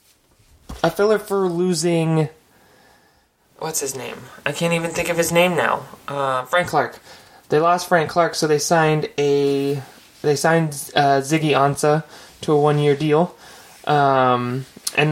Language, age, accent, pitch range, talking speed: English, 20-39, American, 140-170 Hz, 145 wpm